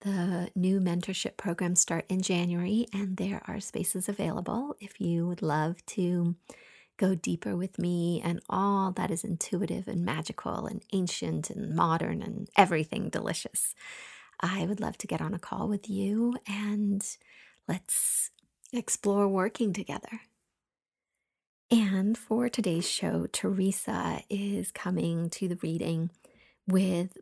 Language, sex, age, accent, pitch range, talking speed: English, female, 30-49, American, 175-210 Hz, 135 wpm